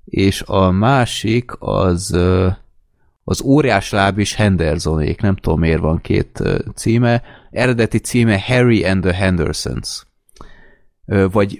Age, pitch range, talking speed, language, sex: 30-49, 85-110 Hz, 105 wpm, Hungarian, male